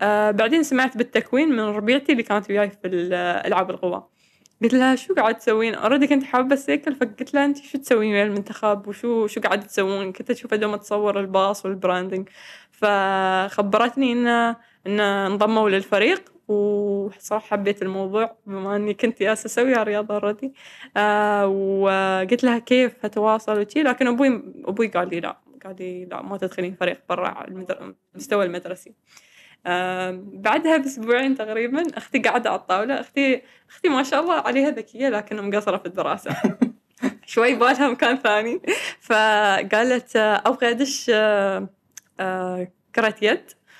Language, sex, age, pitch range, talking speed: Arabic, female, 10-29, 200-255 Hz, 135 wpm